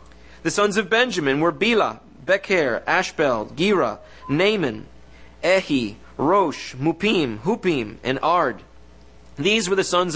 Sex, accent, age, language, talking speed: male, American, 30-49, English, 120 wpm